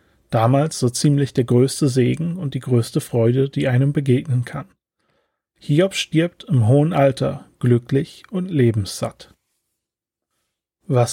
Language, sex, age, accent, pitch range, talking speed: German, male, 40-59, German, 120-145 Hz, 125 wpm